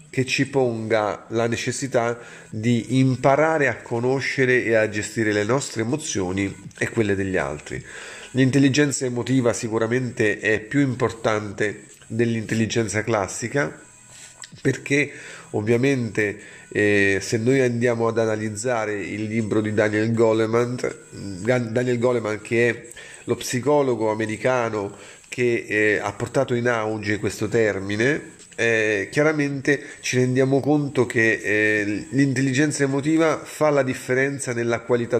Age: 30-49